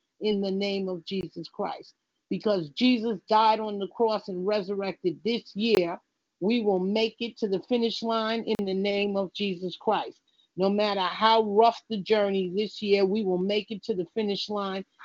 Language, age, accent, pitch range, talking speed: English, 40-59, American, 190-225 Hz, 185 wpm